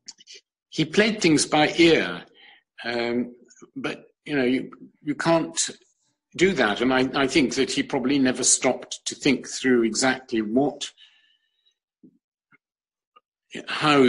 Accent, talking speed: British, 125 wpm